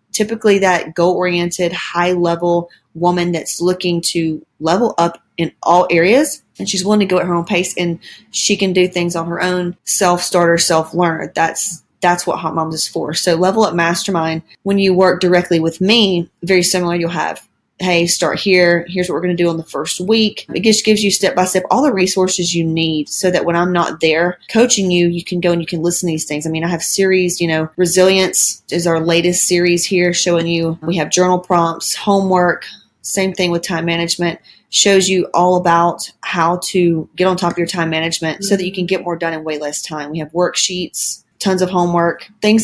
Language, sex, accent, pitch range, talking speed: English, female, American, 170-190 Hz, 210 wpm